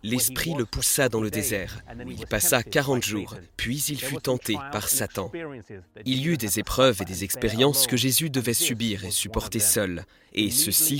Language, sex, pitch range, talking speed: French, male, 100-130 Hz, 180 wpm